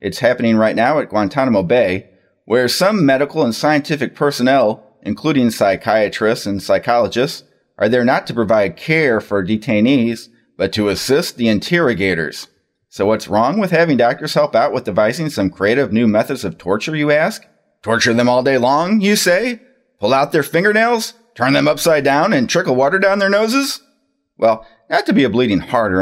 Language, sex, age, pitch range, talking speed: English, male, 30-49, 115-160 Hz, 180 wpm